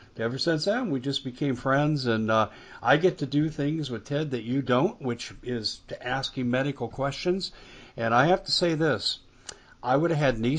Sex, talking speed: male, 210 wpm